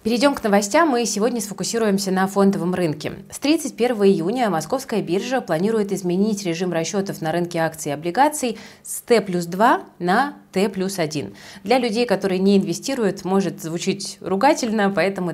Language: Russian